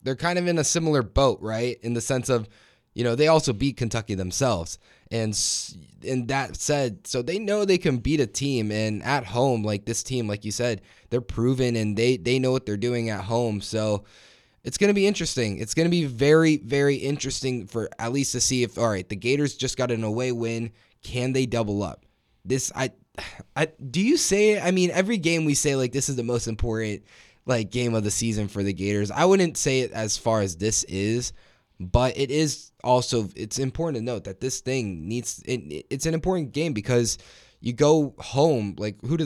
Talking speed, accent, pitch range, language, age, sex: 215 wpm, American, 105-130 Hz, English, 20-39, male